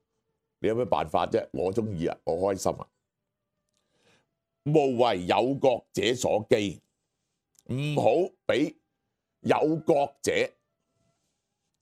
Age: 60-79